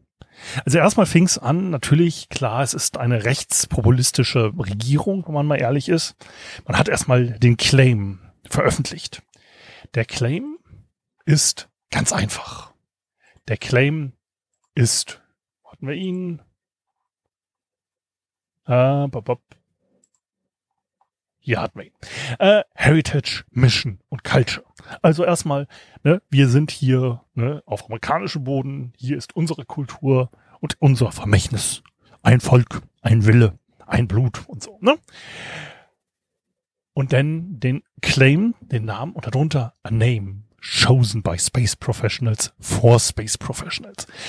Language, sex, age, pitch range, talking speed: German, male, 30-49, 115-150 Hz, 115 wpm